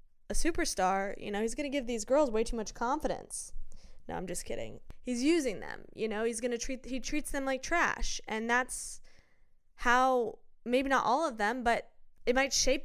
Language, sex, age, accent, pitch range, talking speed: English, female, 10-29, American, 195-250 Hz, 205 wpm